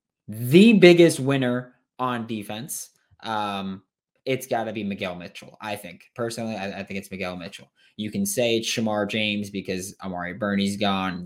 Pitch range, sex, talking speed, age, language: 100-150 Hz, male, 170 wpm, 20-39, English